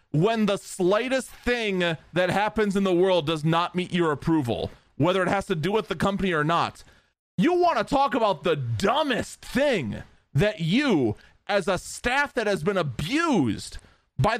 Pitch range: 185-290 Hz